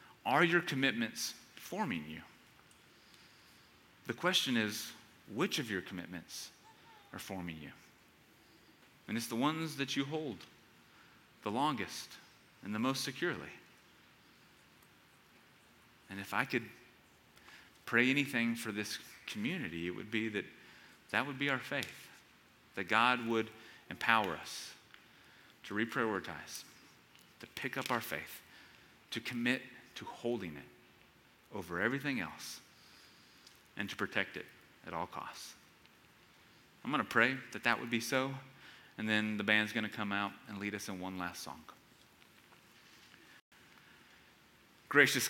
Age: 30-49